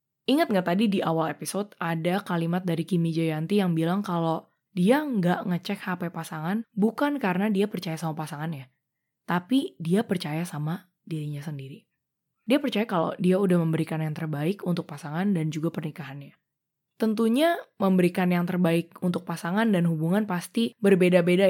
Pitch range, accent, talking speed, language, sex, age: 160-200 Hz, native, 150 wpm, Indonesian, female, 20-39